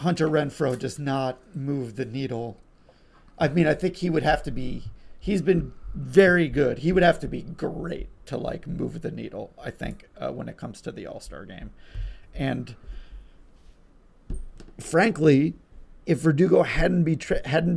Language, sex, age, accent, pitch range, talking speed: English, male, 40-59, American, 120-155 Hz, 160 wpm